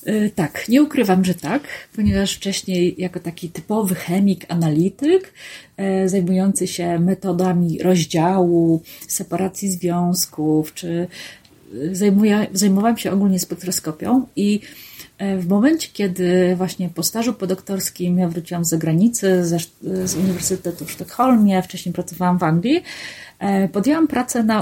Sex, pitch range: female, 175-205 Hz